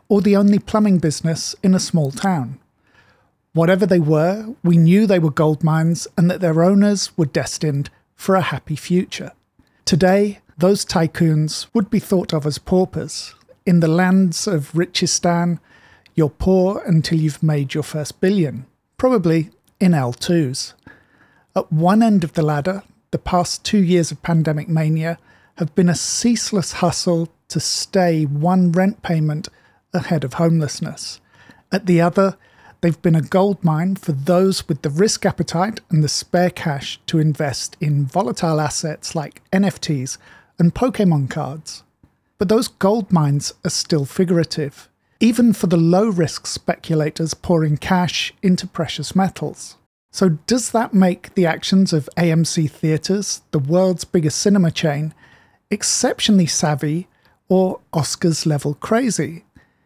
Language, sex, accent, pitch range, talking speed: English, male, British, 155-190 Hz, 145 wpm